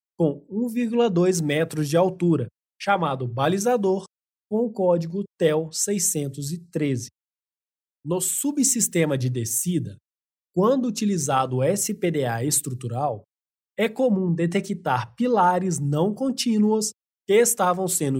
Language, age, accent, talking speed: Portuguese, 20-39, Brazilian, 100 wpm